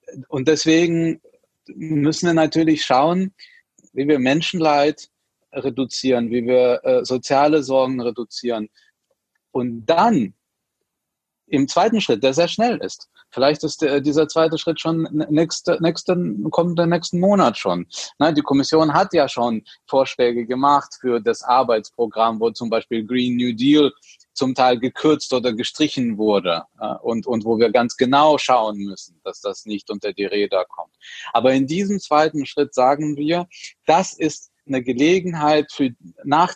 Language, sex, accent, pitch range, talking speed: German, male, German, 125-160 Hz, 140 wpm